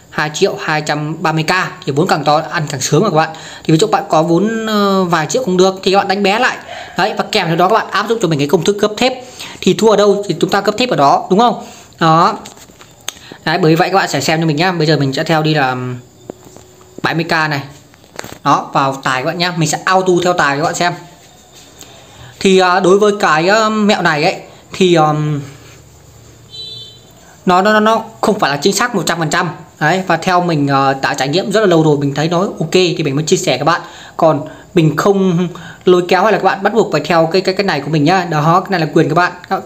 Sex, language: female, English